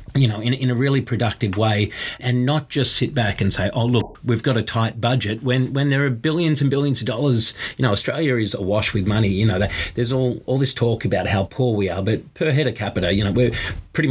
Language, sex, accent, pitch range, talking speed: English, male, Australian, 105-130 Hz, 250 wpm